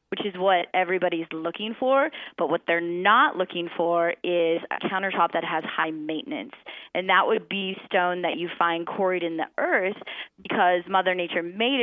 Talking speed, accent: 180 wpm, American